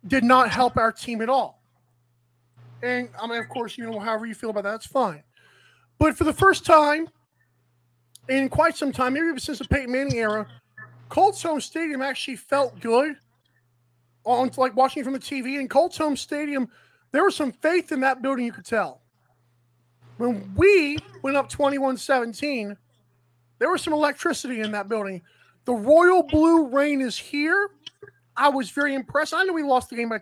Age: 20-39